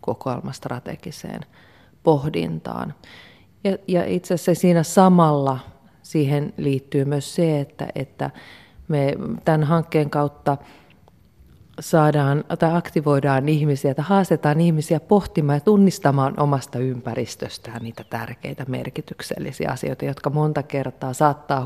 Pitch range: 125-155 Hz